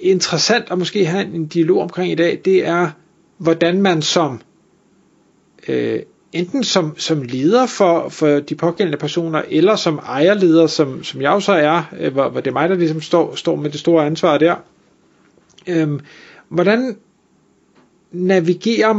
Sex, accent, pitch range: male, native, 155-190 Hz